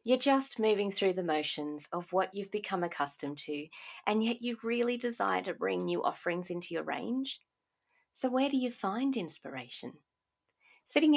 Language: English